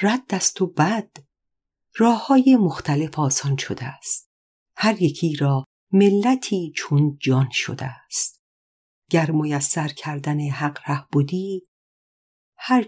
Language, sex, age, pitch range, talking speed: Persian, female, 50-69, 130-180 Hz, 110 wpm